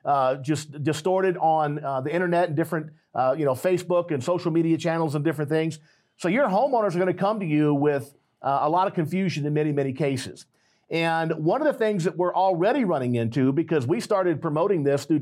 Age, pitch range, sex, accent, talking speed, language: 50-69, 150-190 Hz, male, American, 215 wpm, English